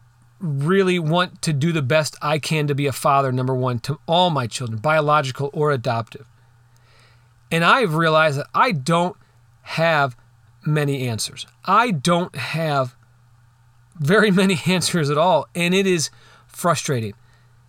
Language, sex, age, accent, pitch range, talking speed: English, male, 40-59, American, 120-170 Hz, 145 wpm